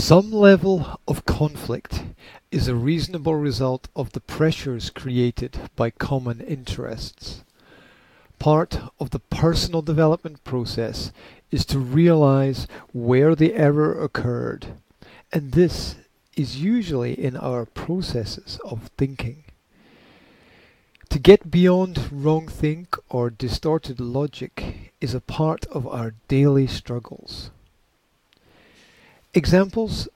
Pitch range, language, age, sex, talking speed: 125-160 Hz, English, 50-69, male, 105 wpm